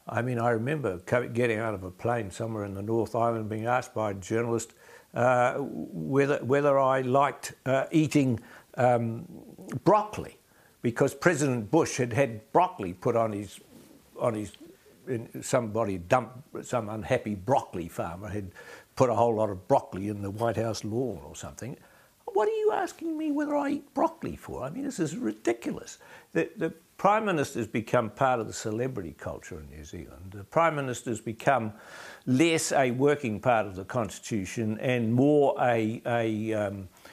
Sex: male